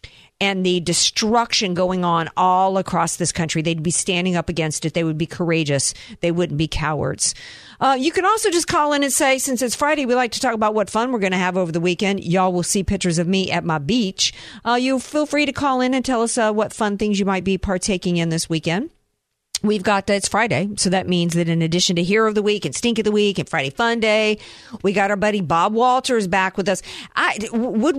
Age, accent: 50-69, American